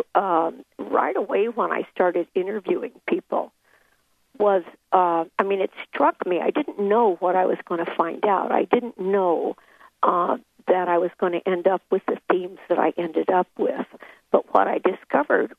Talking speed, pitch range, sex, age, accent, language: 185 wpm, 175-235 Hz, female, 60-79, American, English